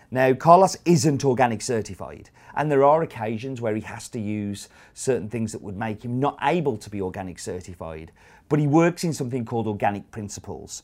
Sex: male